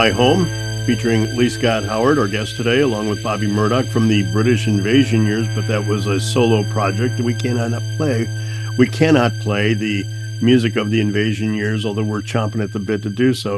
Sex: male